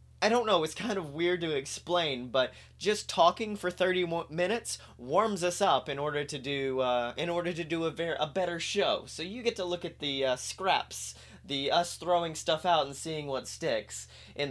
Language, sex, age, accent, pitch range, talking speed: English, male, 30-49, American, 130-175 Hz, 215 wpm